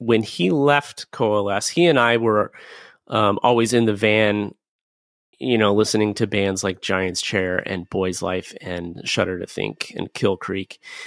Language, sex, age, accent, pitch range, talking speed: English, male, 30-49, American, 100-110 Hz, 170 wpm